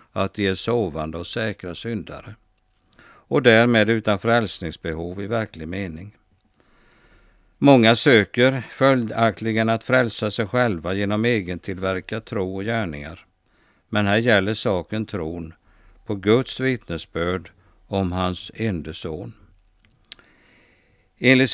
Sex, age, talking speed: male, 60-79, 105 wpm